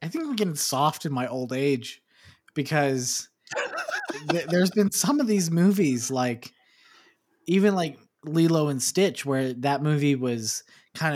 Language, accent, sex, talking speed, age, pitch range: English, American, male, 150 wpm, 20-39, 125-155 Hz